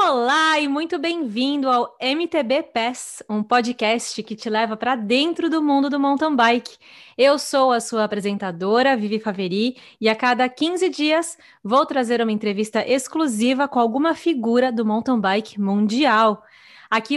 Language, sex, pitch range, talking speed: Portuguese, female, 225-285 Hz, 155 wpm